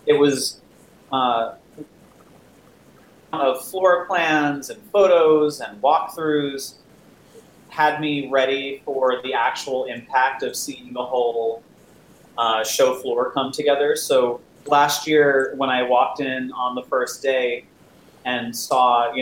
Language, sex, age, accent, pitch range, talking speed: English, male, 30-49, American, 125-145 Hz, 125 wpm